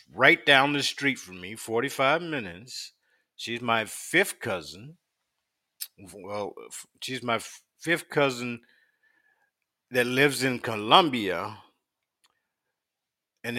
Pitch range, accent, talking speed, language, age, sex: 110-145 Hz, American, 100 wpm, English, 50-69, male